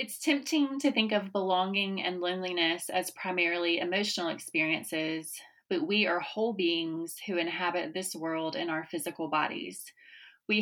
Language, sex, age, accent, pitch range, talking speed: English, female, 30-49, American, 170-200 Hz, 145 wpm